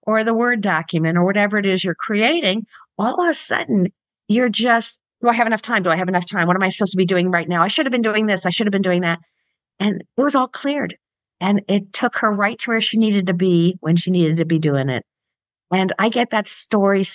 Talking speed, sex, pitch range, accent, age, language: 265 wpm, female, 180-235 Hz, American, 50-69, English